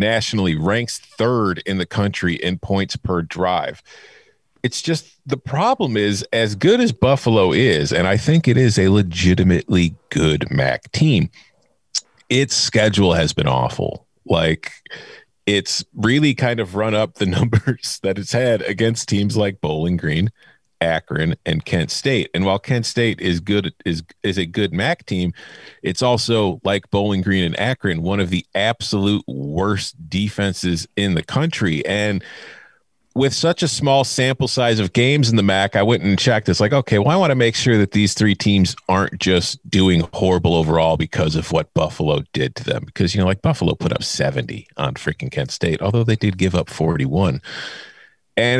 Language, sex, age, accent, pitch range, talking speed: English, male, 40-59, American, 95-135 Hz, 180 wpm